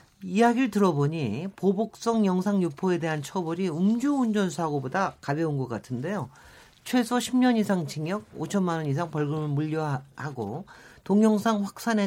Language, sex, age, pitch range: Korean, male, 40-59, 140-215 Hz